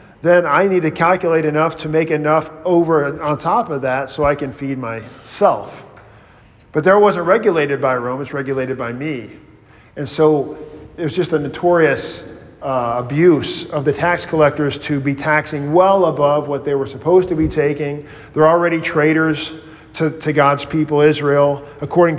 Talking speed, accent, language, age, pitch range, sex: 175 wpm, American, English, 40-59, 135-175 Hz, male